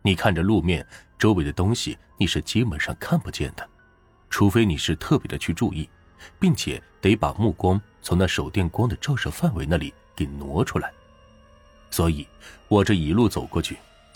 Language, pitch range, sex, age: Chinese, 75-115 Hz, male, 30-49